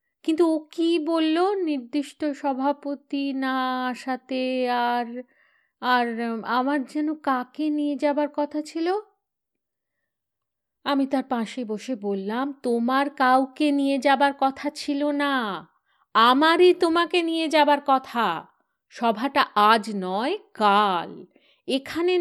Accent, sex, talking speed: native, female, 105 wpm